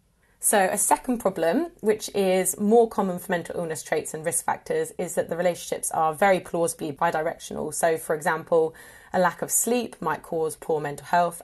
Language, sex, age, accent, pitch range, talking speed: English, female, 20-39, British, 155-185 Hz, 185 wpm